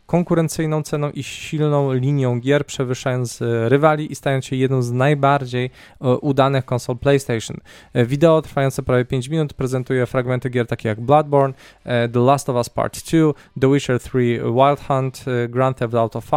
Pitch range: 125-150 Hz